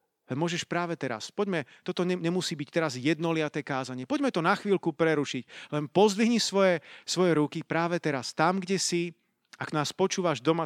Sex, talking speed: male, 170 wpm